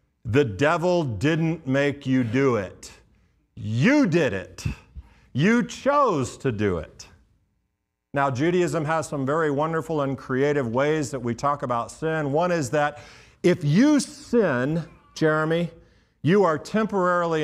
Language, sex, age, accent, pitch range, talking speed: English, male, 50-69, American, 120-170 Hz, 135 wpm